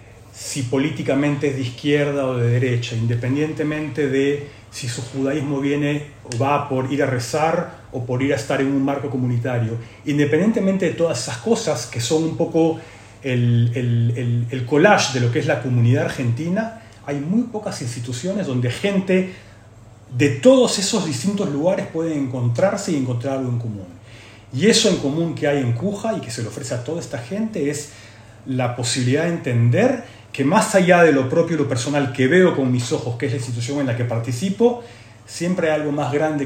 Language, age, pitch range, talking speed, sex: Spanish, 40-59, 120-160 Hz, 195 wpm, male